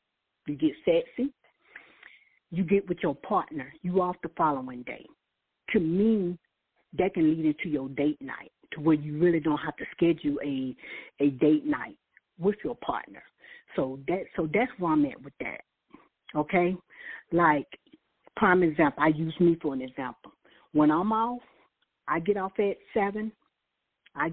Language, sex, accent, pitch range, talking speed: English, female, American, 160-240 Hz, 160 wpm